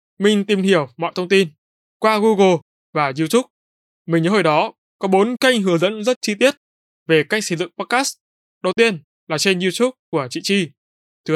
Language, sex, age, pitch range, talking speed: Vietnamese, male, 20-39, 150-205 Hz, 190 wpm